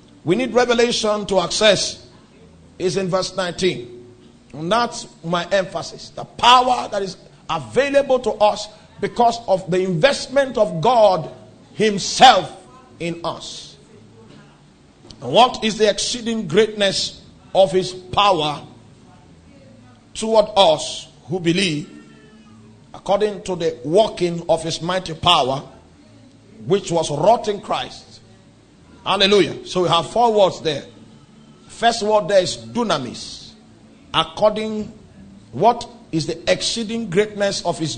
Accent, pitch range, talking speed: Nigerian, 165-225 Hz, 120 wpm